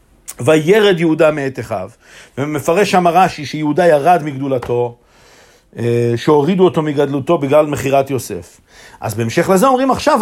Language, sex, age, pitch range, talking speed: Hebrew, male, 50-69, 150-205 Hz, 125 wpm